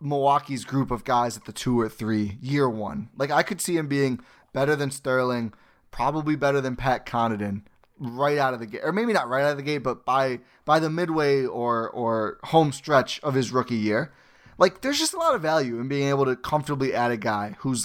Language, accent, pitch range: English, American, 120-155 Hz